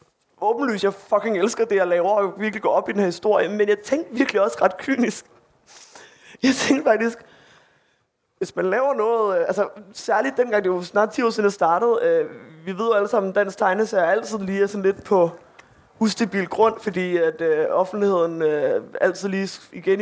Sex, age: male, 20-39